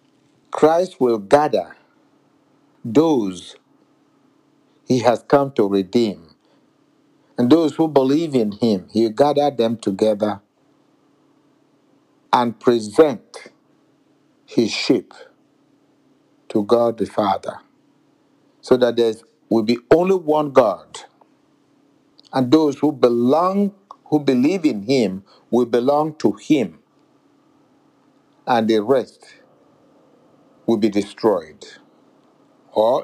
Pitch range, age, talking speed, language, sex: 115-150 Hz, 60-79, 100 wpm, English, male